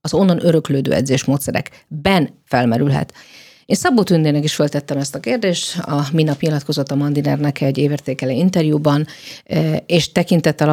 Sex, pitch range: female, 145-170 Hz